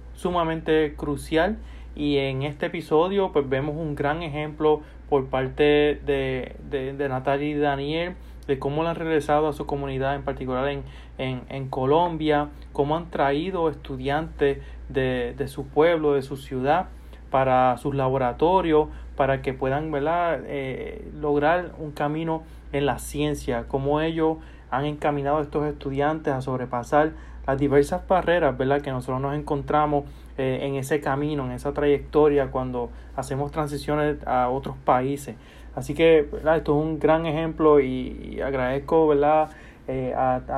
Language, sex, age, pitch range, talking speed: English, male, 30-49, 135-150 Hz, 145 wpm